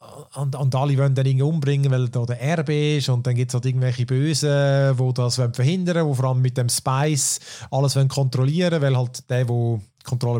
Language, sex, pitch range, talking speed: German, male, 130-155 Hz, 210 wpm